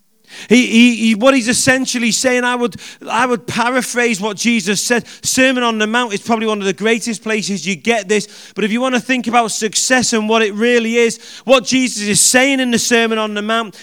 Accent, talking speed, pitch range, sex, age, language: British, 225 wpm, 210-245 Hz, male, 40-59, English